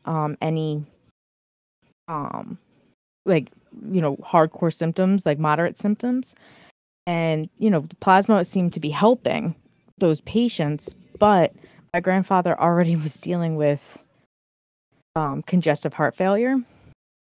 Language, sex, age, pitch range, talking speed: English, female, 20-39, 145-170 Hz, 110 wpm